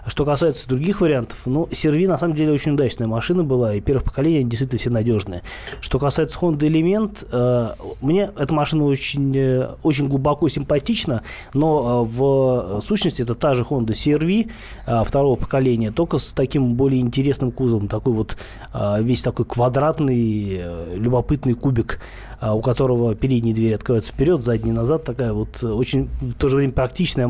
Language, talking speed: Russian, 165 wpm